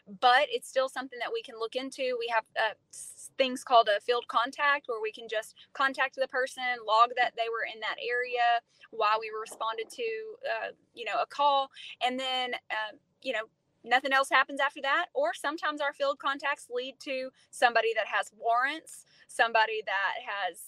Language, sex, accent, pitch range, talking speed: English, female, American, 230-275 Hz, 185 wpm